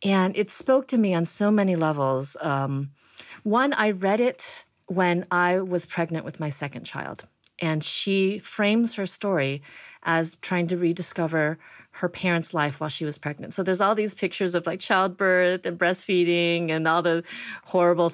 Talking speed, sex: 170 wpm, female